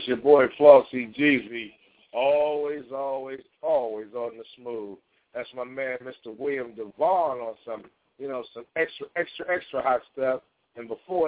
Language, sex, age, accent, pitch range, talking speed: English, male, 60-79, American, 125-160 Hz, 150 wpm